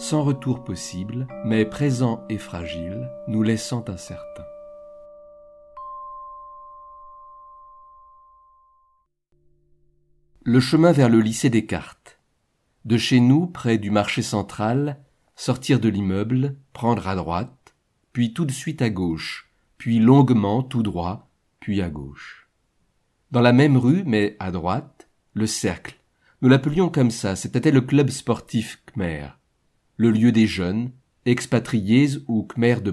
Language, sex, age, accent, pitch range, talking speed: French, male, 50-69, French, 105-145 Hz, 125 wpm